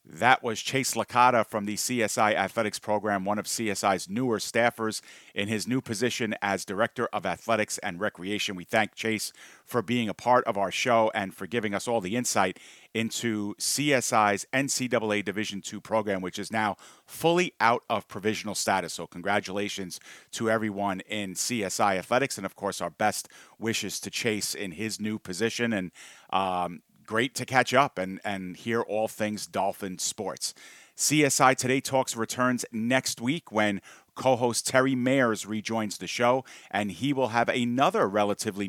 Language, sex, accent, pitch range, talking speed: English, male, American, 100-120 Hz, 165 wpm